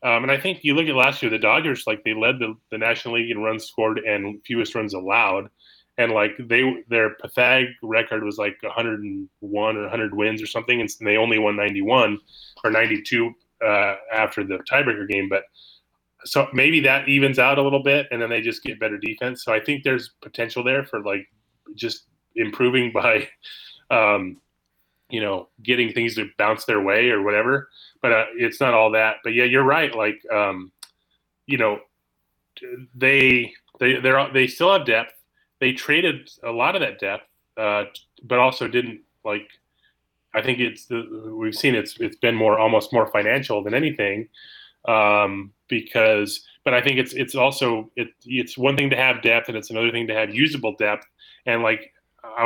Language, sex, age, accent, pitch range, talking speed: English, male, 20-39, American, 105-130 Hz, 190 wpm